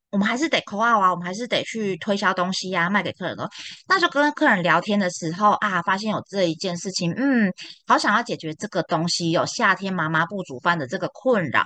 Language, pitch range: Chinese, 170-225 Hz